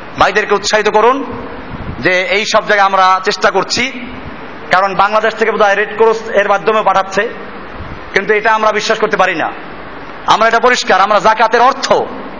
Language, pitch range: Bengali, 195-230 Hz